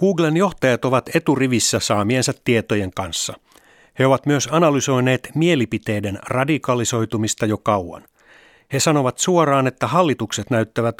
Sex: male